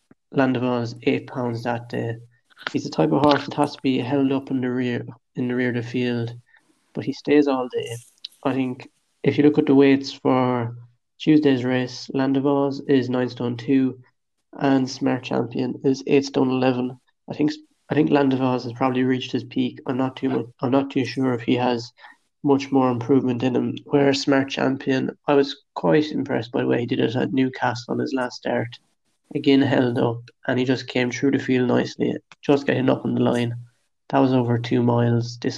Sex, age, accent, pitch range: male, 20-39, Irish, 125-140 Hz